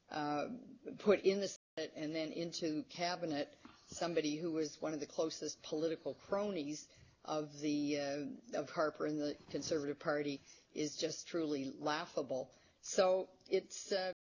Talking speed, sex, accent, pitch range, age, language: 145 wpm, female, American, 145-170 Hz, 50-69, English